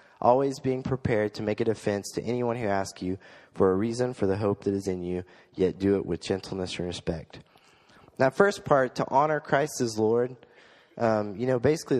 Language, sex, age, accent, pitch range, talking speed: English, male, 20-39, American, 95-120 Hz, 205 wpm